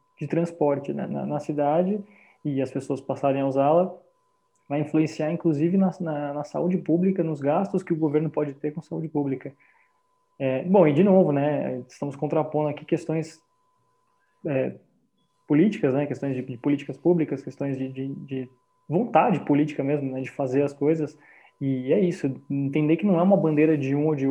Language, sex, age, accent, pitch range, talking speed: Portuguese, male, 20-39, Brazilian, 140-185 Hz, 175 wpm